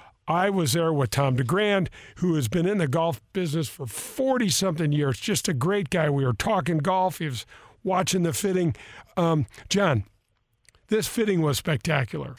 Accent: American